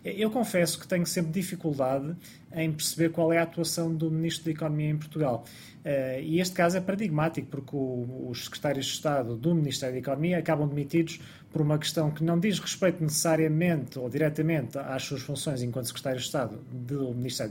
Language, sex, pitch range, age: Portuguese, male, 130-160 Hz, 20-39